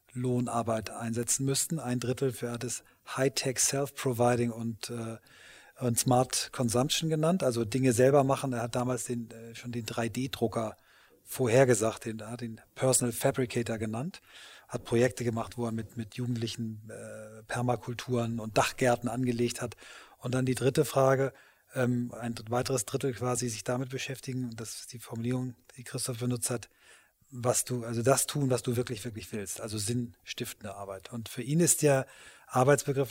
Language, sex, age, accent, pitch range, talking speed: German, male, 30-49, German, 120-135 Hz, 165 wpm